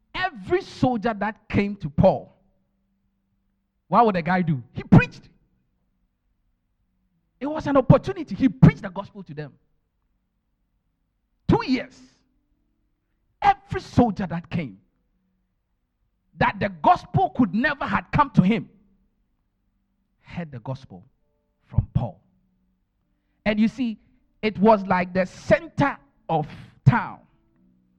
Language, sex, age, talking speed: English, male, 50-69, 115 wpm